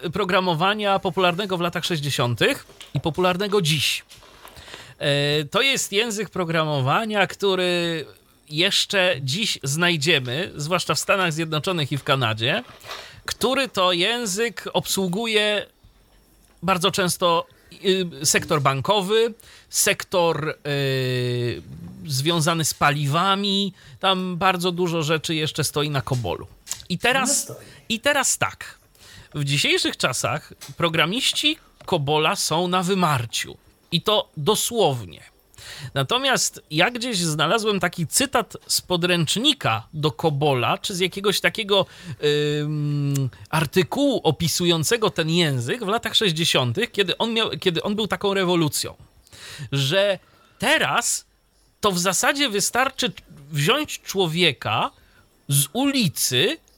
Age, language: 30-49, Polish